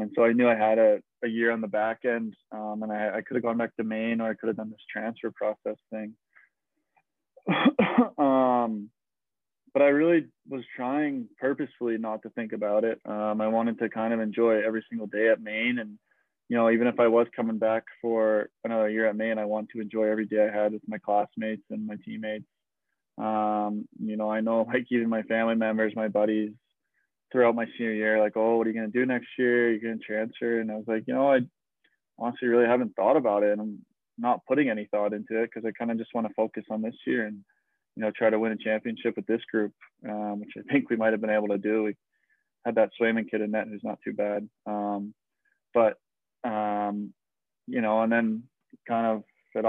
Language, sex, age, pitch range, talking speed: English, male, 20-39, 105-115 Hz, 230 wpm